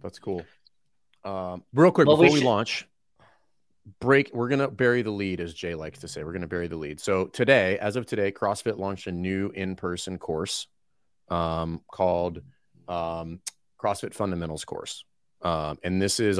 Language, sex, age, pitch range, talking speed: English, male, 30-49, 90-115 Hz, 170 wpm